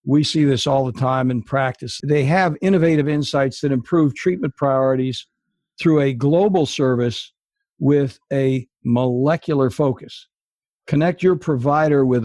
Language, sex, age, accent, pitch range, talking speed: English, male, 60-79, American, 130-155 Hz, 135 wpm